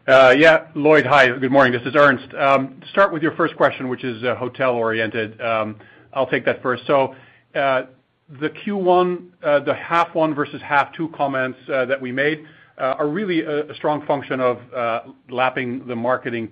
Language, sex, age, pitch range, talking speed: English, male, 50-69, 115-140 Hz, 185 wpm